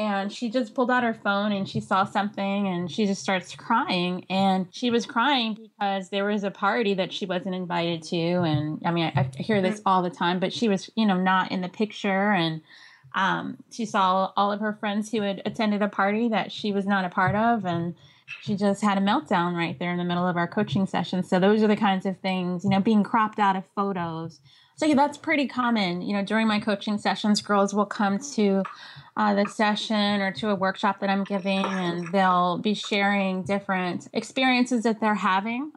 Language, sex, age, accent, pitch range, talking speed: English, female, 20-39, American, 185-220 Hz, 220 wpm